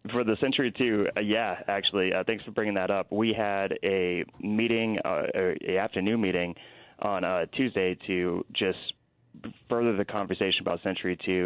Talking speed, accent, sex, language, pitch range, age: 170 wpm, American, male, English, 90-105 Hz, 20-39